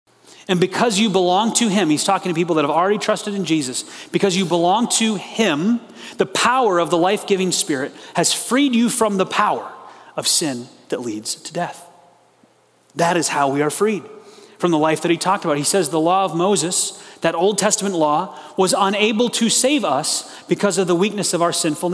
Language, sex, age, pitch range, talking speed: English, male, 30-49, 175-215 Hz, 200 wpm